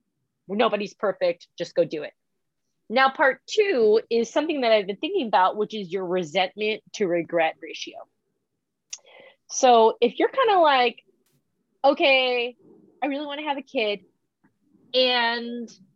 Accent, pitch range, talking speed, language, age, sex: American, 180-255 Hz, 145 wpm, English, 20-39, female